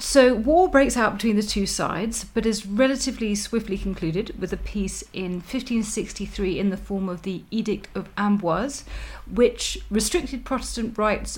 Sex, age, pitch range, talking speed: female, 40-59, 185-230 Hz, 160 wpm